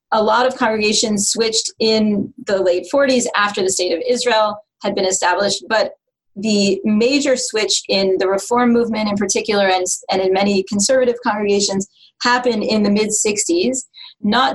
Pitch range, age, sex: 190-230 Hz, 30-49, female